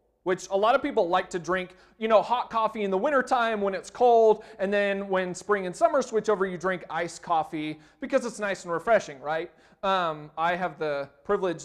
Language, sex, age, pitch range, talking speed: English, male, 30-49, 155-215 Hz, 210 wpm